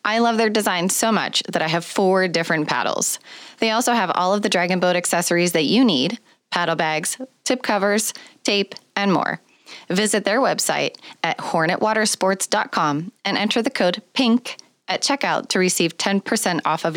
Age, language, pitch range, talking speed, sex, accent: 20-39, English, 155-210 Hz, 170 wpm, female, American